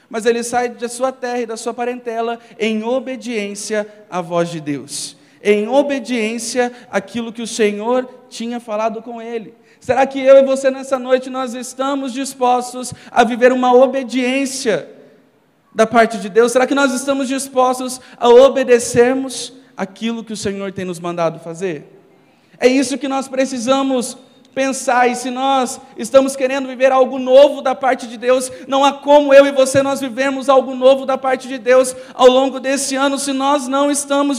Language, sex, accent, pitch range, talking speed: Portuguese, male, Brazilian, 240-270 Hz, 175 wpm